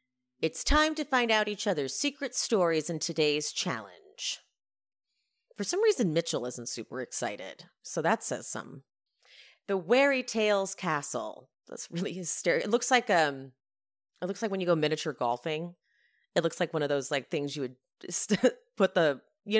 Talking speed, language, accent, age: 170 wpm, English, American, 30-49